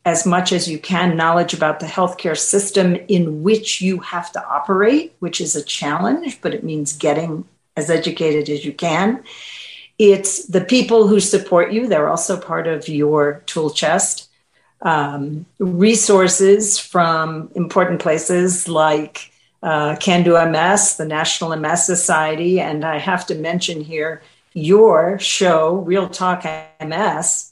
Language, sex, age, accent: English, female, 50-69, American